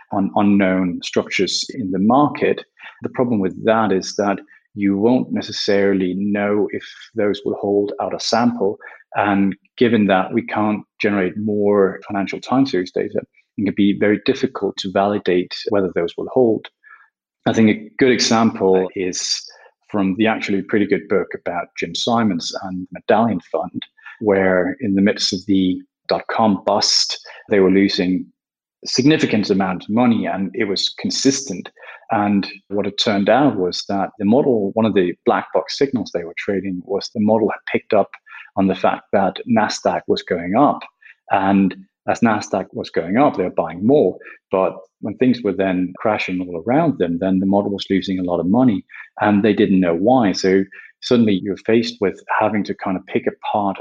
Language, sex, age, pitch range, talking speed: English, male, 30-49, 95-105 Hz, 175 wpm